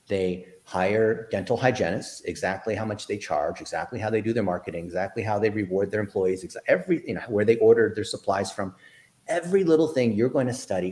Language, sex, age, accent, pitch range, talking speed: English, male, 40-59, American, 95-135 Hz, 205 wpm